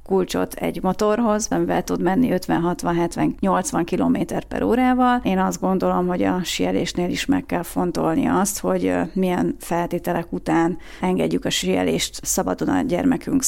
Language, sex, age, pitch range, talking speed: Hungarian, female, 30-49, 170-200 Hz, 140 wpm